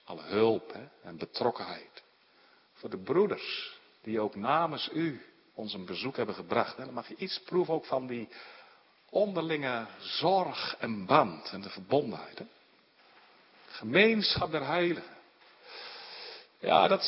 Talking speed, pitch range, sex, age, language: 135 wpm, 135-210 Hz, male, 50-69, Dutch